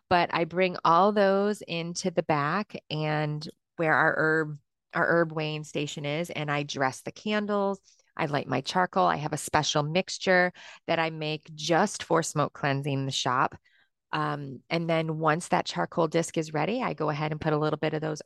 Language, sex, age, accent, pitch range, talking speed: English, female, 30-49, American, 155-185 Hz, 195 wpm